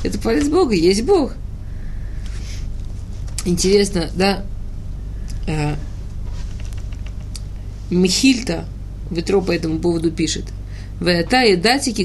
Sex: female